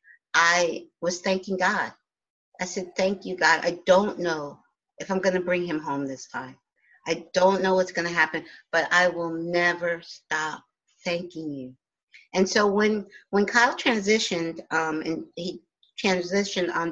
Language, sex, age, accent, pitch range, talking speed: English, female, 50-69, American, 165-200 Hz, 155 wpm